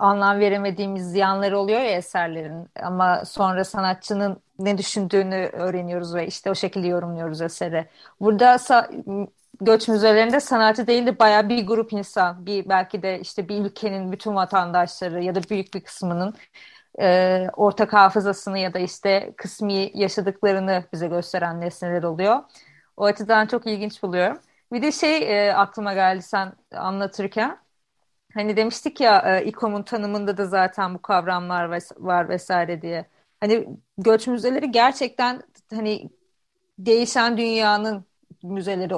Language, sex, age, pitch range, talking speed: Turkish, female, 30-49, 185-225 Hz, 130 wpm